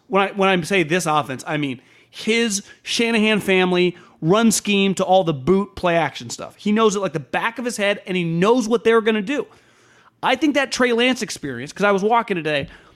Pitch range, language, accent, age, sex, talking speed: 145-205 Hz, English, American, 30-49, male, 225 wpm